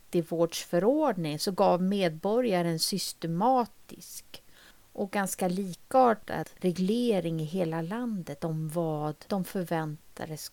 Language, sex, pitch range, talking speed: English, female, 165-225 Hz, 105 wpm